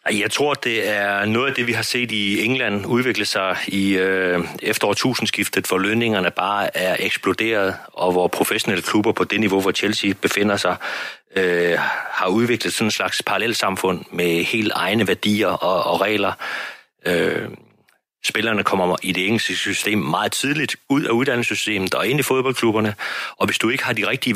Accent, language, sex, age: native, Danish, male, 40-59